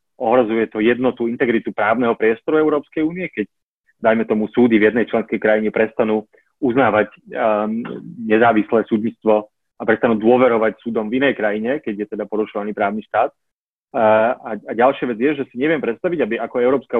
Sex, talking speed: male, 165 wpm